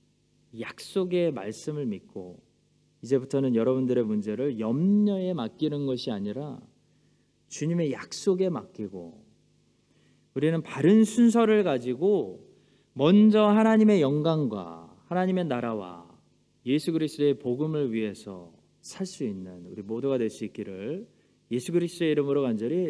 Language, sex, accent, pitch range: Korean, male, native, 115-175 Hz